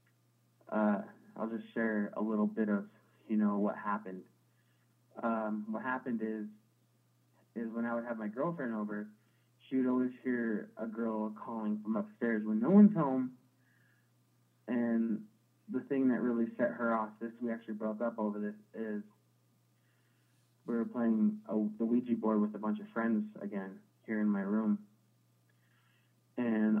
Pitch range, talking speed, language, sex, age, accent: 105-120 Hz, 160 wpm, English, male, 20-39, American